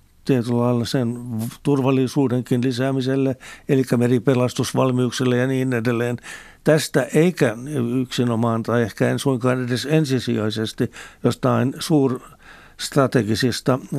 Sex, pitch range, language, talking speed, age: male, 120-135 Hz, Finnish, 80 wpm, 60-79